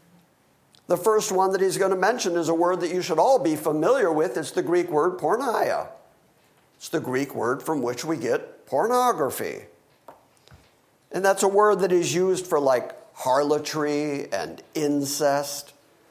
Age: 50-69